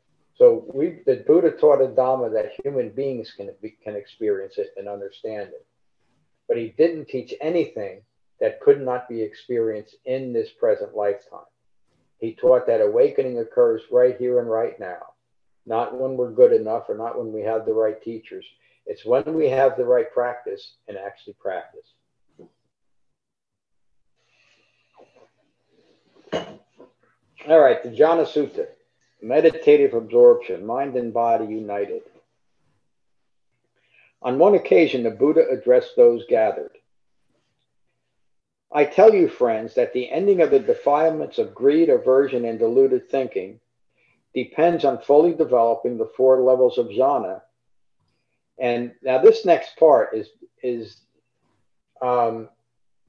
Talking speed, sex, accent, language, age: 130 wpm, male, American, English, 50-69